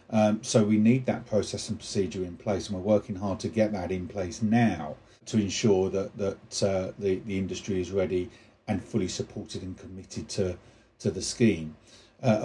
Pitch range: 95-115 Hz